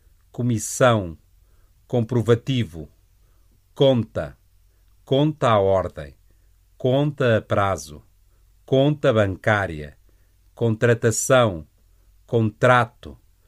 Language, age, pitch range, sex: Chinese, 50-69, 90-120 Hz, male